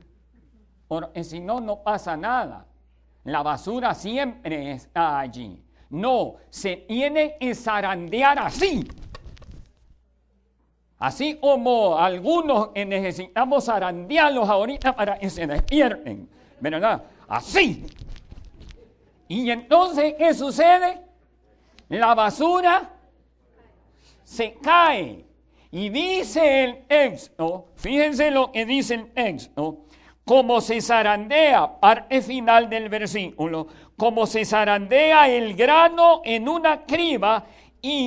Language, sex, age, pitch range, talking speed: English, male, 50-69, 180-300 Hz, 100 wpm